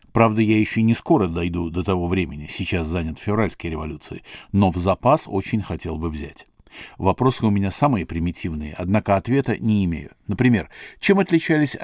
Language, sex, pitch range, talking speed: Russian, male, 85-120 Hz, 160 wpm